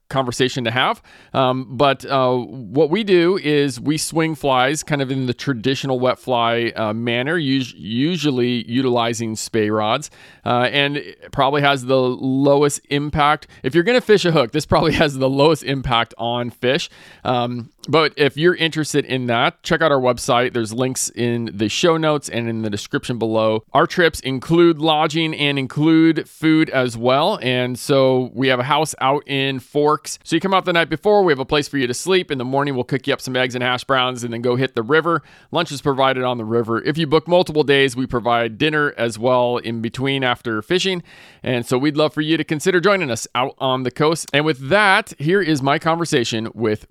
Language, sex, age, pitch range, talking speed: English, male, 40-59, 125-155 Hz, 210 wpm